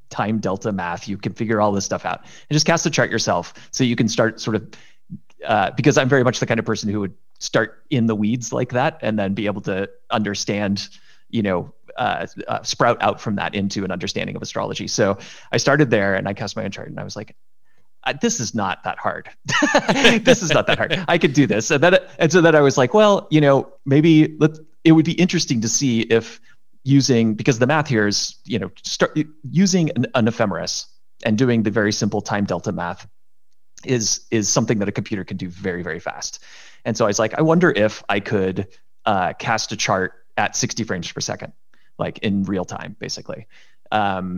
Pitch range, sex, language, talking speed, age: 100-150 Hz, male, English, 220 wpm, 30-49